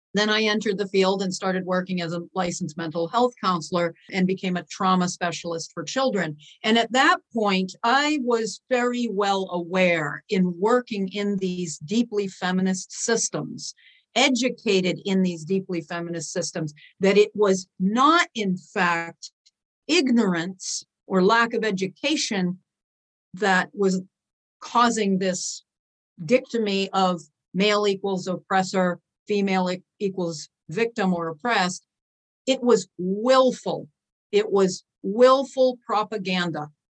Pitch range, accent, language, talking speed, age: 180-215 Hz, American, English, 120 wpm, 50-69